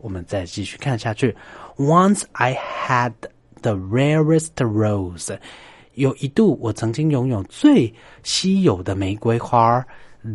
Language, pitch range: Chinese, 100-135 Hz